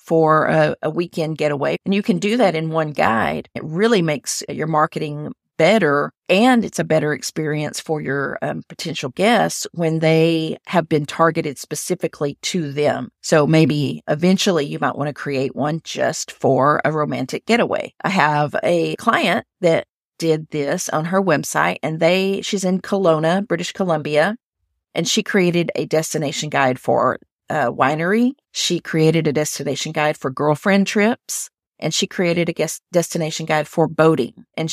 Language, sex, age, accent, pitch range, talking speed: English, female, 50-69, American, 150-185 Hz, 165 wpm